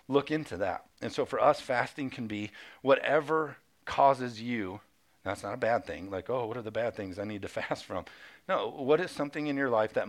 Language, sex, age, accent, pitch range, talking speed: English, male, 50-69, American, 105-130 Hz, 225 wpm